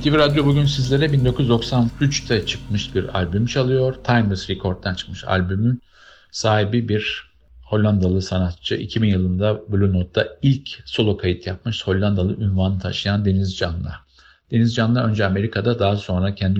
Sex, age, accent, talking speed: male, 50-69, native, 135 wpm